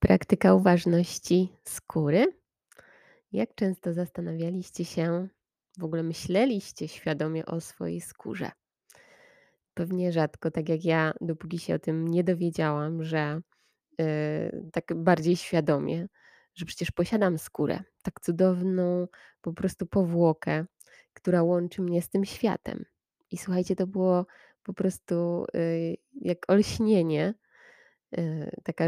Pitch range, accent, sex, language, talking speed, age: 165-190 Hz, native, female, Polish, 110 wpm, 20-39